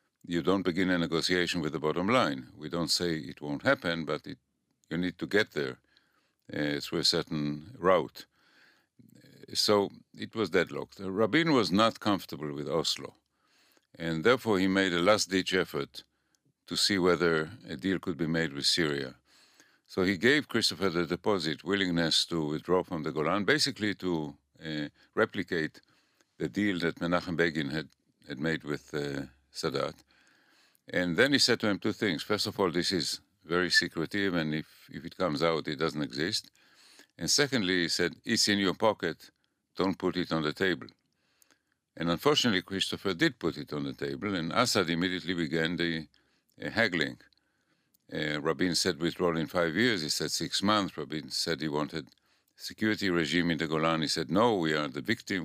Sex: male